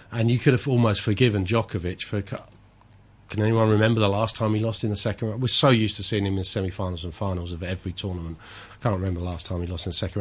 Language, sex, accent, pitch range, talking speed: English, male, British, 95-110 Hz, 265 wpm